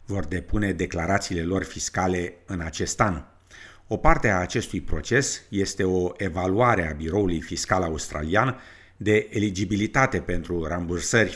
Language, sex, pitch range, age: Romanian, male, 85-105 Hz, 50-69